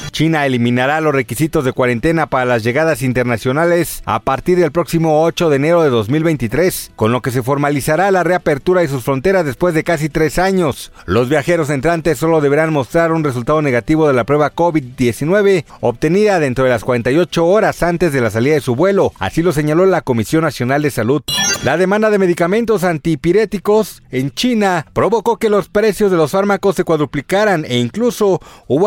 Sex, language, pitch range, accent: male, Spanish, 140-190 Hz, Mexican